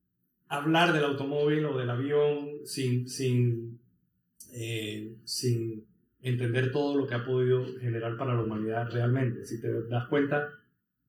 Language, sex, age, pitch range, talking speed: Spanish, male, 30-49, 120-150 Hz, 135 wpm